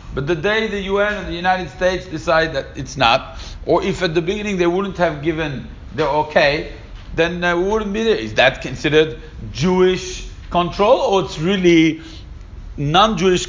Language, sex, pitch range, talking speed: English, male, 115-165 Hz, 170 wpm